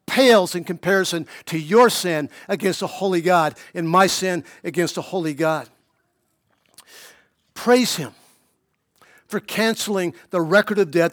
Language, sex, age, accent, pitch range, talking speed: English, male, 50-69, American, 190-240 Hz, 135 wpm